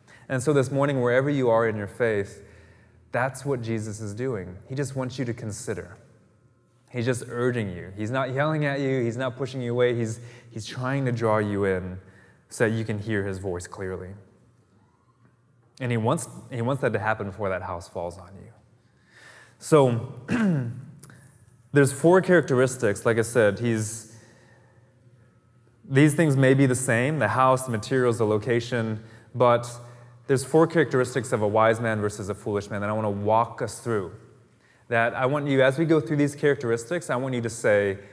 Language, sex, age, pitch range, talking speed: English, male, 20-39, 110-135 Hz, 185 wpm